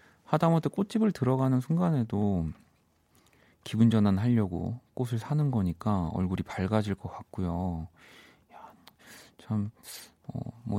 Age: 40-59